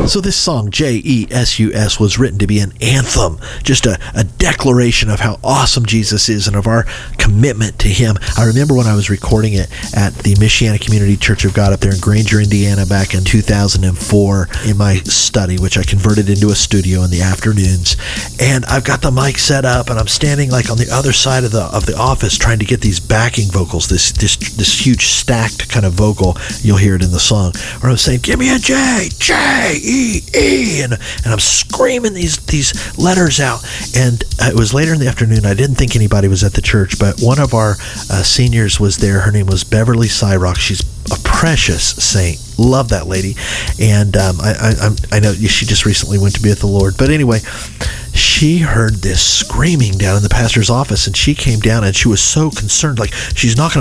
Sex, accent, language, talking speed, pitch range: male, American, English, 210 wpm, 100-125 Hz